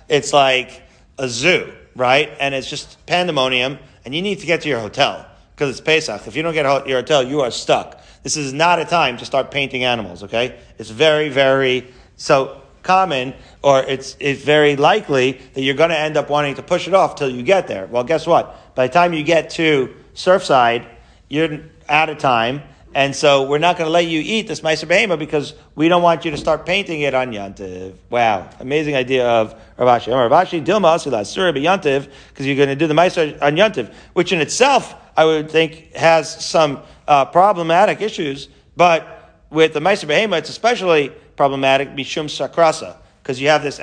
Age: 40-59